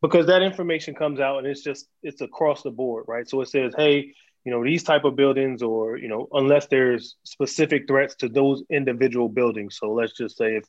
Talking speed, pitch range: 220 wpm, 120-145 Hz